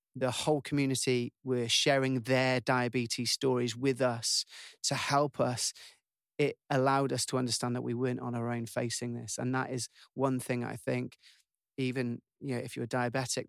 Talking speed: 180 wpm